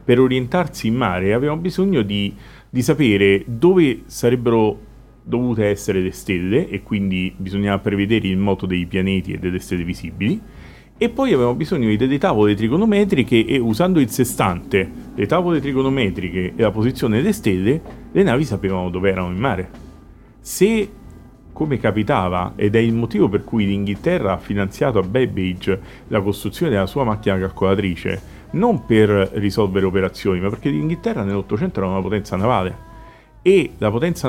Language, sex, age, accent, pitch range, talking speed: Italian, male, 40-59, native, 100-155 Hz, 155 wpm